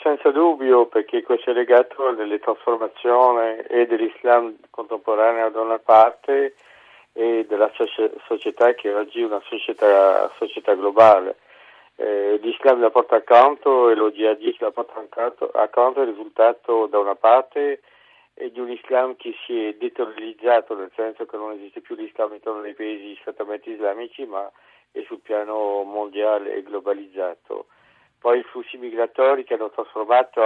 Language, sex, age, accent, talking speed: Italian, male, 50-69, native, 150 wpm